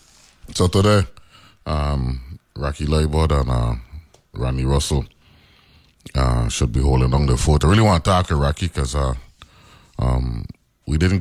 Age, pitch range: 30-49, 65-85 Hz